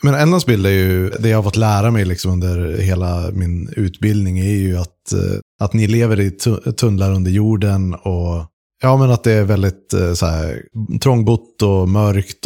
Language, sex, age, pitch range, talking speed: Swedish, male, 30-49, 90-110 Hz, 180 wpm